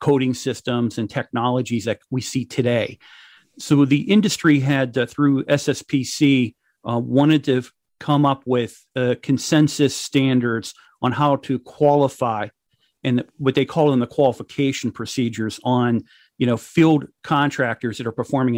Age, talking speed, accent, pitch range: 40-59, 140 wpm, American, 120-140 Hz